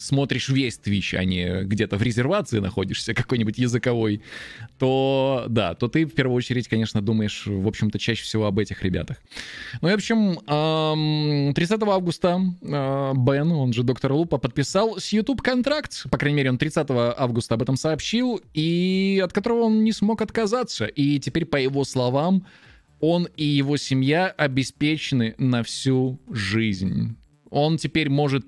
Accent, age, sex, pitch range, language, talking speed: native, 20-39, male, 110-155 Hz, Russian, 155 wpm